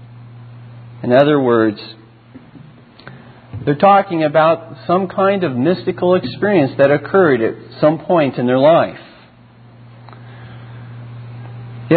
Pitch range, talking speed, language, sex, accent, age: 120-180 Hz, 100 wpm, English, male, American, 50-69